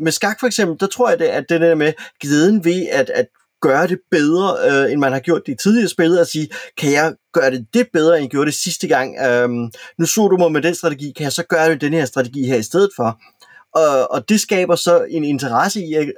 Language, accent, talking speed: Danish, native, 260 wpm